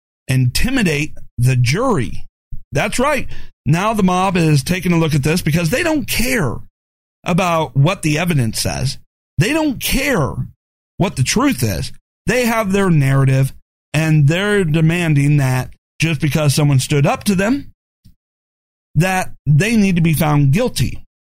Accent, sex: American, male